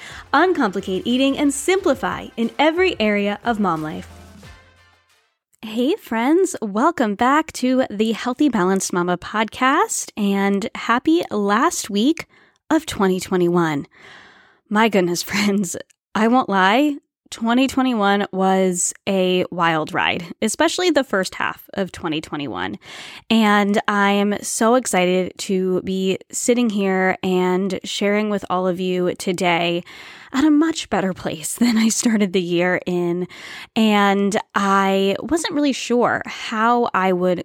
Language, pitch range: English, 185-245 Hz